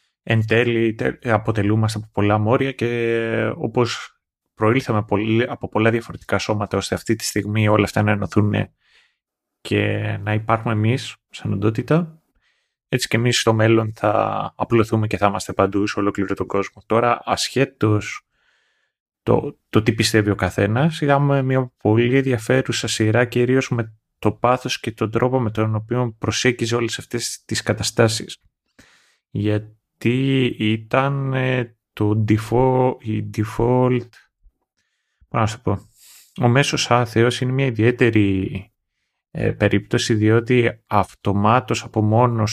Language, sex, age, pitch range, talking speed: Greek, male, 30-49, 105-120 Hz, 125 wpm